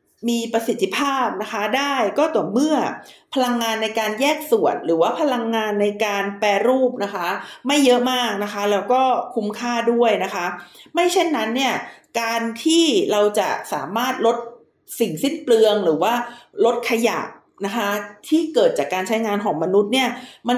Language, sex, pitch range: Thai, female, 215-270 Hz